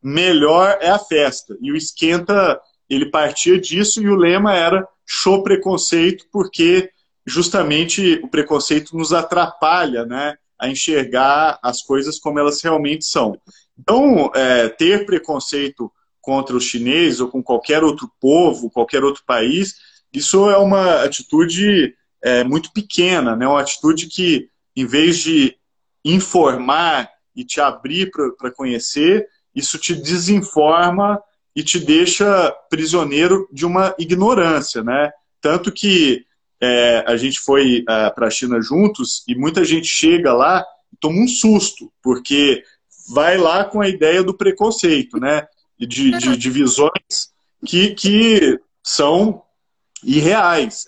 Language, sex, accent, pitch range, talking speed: Portuguese, male, Brazilian, 145-200 Hz, 135 wpm